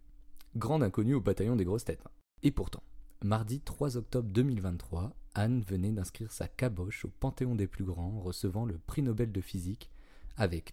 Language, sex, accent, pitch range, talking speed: French, male, French, 95-130 Hz, 170 wpm